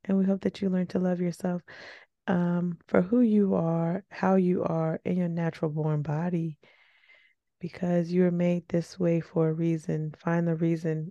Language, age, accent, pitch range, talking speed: English, 20-39, American, 155-180 Hz, 185 wpm